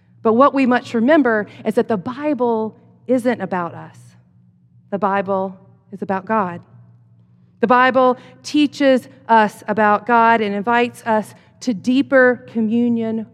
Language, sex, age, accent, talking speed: English, female, 40-59, American, 130 wpm